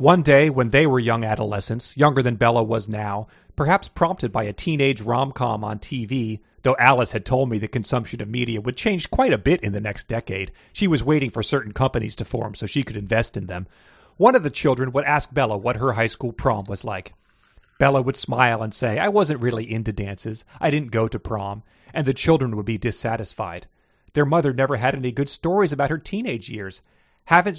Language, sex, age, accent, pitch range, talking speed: English, male, 30-49, American, 105-135 Hz, 215 wpm